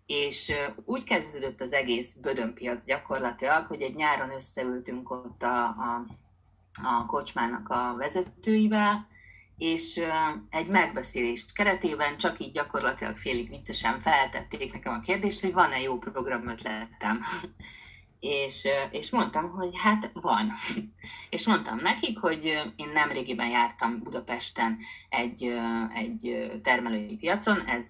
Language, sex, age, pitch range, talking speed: Hungarian, female, 30-49, 120-185 Hz, 115 wpm